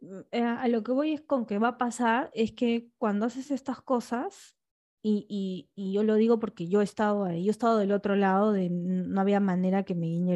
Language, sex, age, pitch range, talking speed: Spanish, female, 10-29, 190-230 Hz, 220 wpm